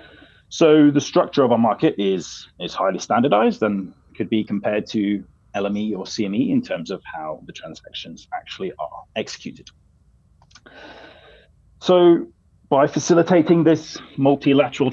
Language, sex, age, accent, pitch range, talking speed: English, male, 30-49, British, 105-150 Hz, 130 wpm